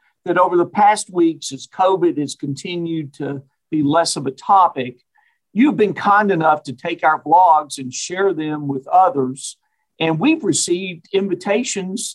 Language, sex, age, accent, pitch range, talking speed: English, male, 50-69, American, 150-190 Hz, 160 wpm